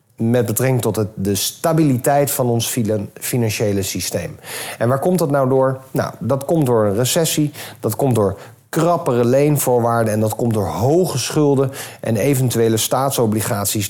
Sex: male